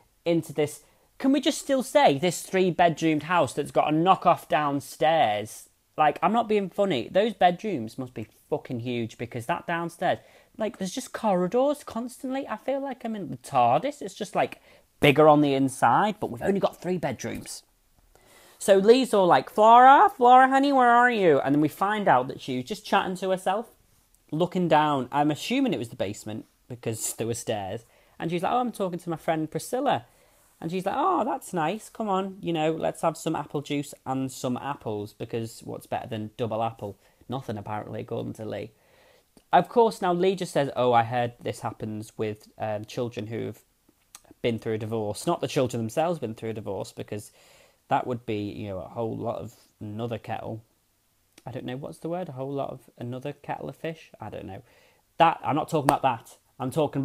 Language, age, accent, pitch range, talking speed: English, 30-49, British, 115-190 Hz, 200 wpm